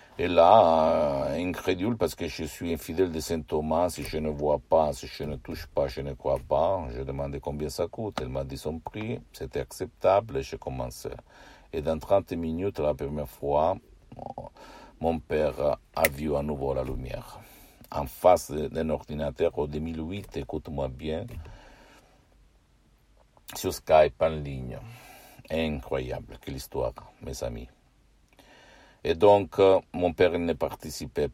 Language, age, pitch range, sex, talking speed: Italian, 60-79, 70-80 Hz, male, 150 wpm